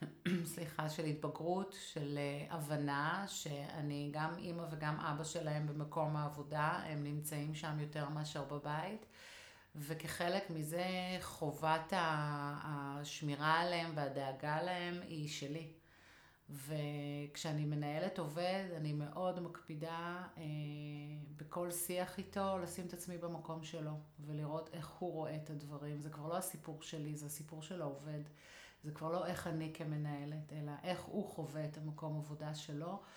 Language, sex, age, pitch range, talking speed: Hebrew, female, 30-49, 150-170 Hz, 130 wpm